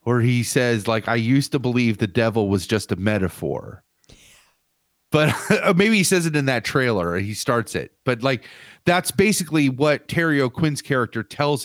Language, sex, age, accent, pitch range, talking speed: English, male, 40-59, American, 115-155 Hz, 175 wpm